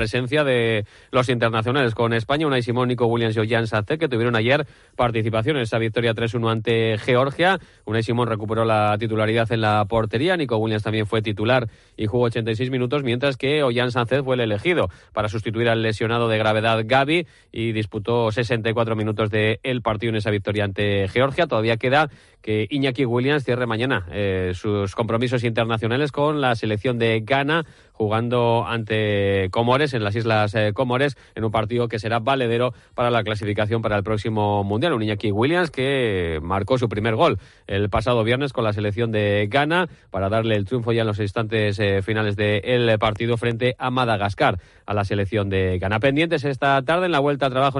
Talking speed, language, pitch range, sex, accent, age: 185 wpm, Spanish, 110-130 Hz, male, Spanish, 30-49